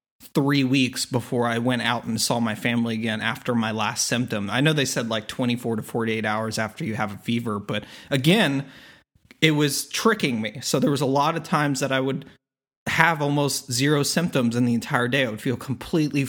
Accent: American